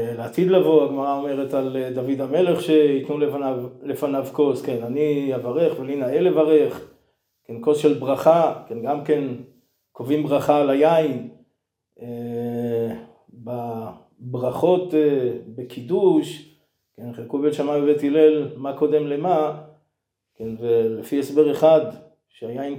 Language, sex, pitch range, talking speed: Hebrew, male, 125-150 Hz, 120 wpm